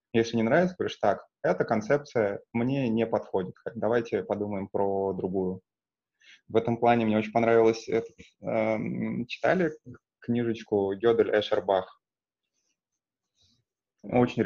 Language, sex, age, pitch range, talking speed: Russian, male, 20-39, 105-120 Hz, 105 wpm